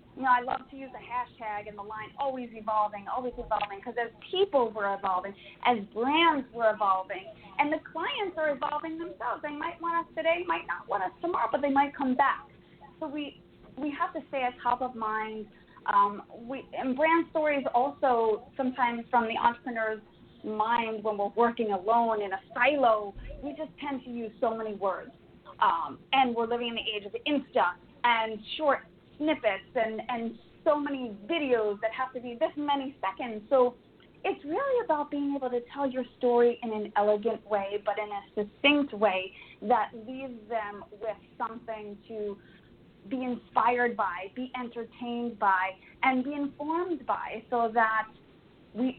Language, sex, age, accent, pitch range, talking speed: English, female, 30-49, American, 215-275 Hz, 175 wpm